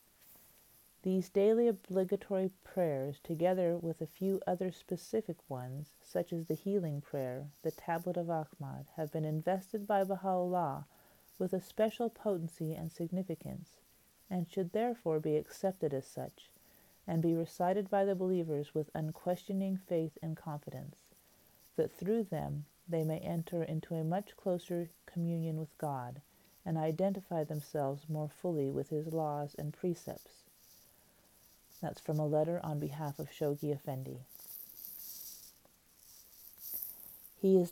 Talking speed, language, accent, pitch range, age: 130 wpm, English, American, 145-175 Hz, 40-59